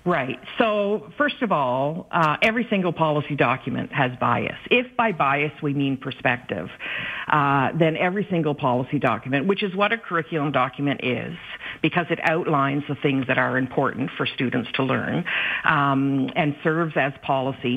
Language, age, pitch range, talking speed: English, 50-69, 140-200 Hz, 160 wpm